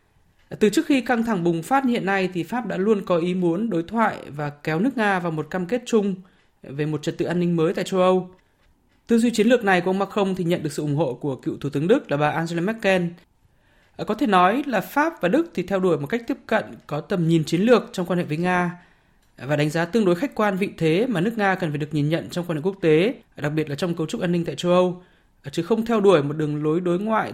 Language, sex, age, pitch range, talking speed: Vietnamese, male, 20-39, 160-200 Hz, 275 wpm